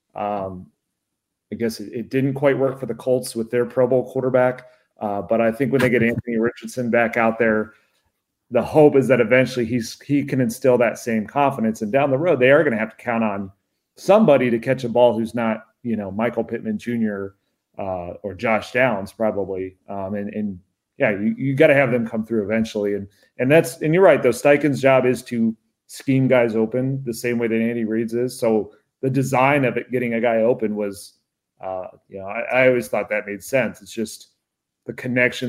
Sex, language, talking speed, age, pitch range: male, English, 210 wpm, 30-49, 105-125 Hz